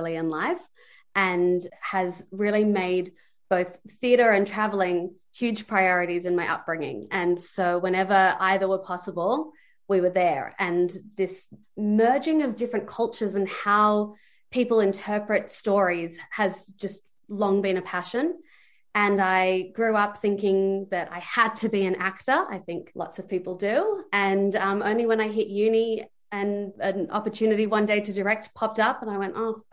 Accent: Australian